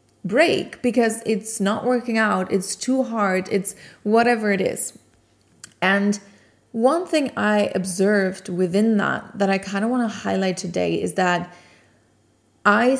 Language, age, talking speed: English, 30-49, 145 wpm